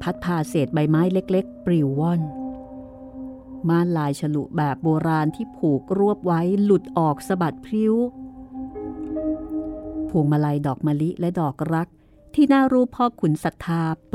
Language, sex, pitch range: Thai, female, 155-215 Hz